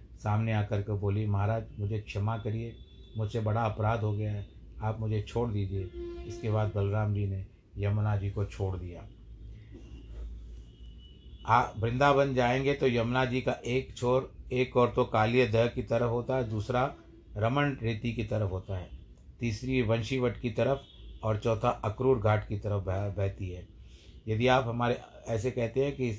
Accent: native